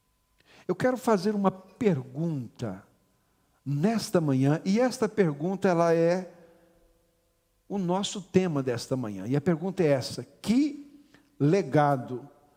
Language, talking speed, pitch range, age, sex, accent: Portuguese, 115 wpm, 140-195 Hz, 50-69, male, Brazilian